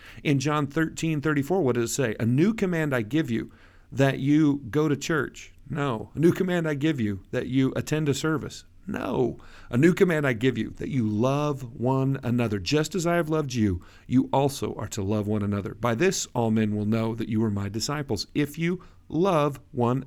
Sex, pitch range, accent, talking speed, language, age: male, 105-140 Hz, American, 210 wpm, English, 50-69